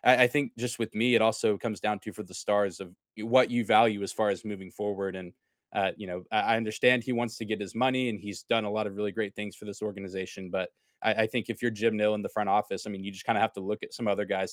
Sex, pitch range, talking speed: male, 100-115 Hz, 295 wpm